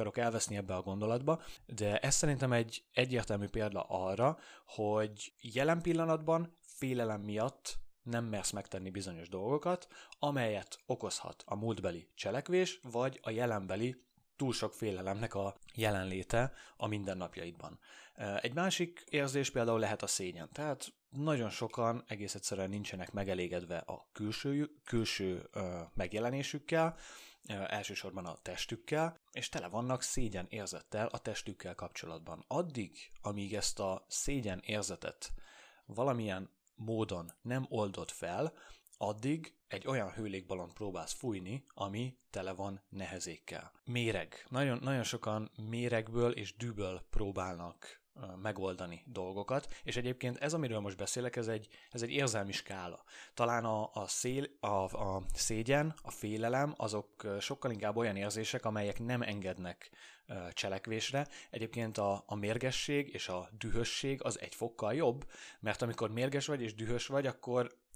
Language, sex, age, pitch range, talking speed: Hungarian, male, 30-49, 100-130 Hz, 130 wpm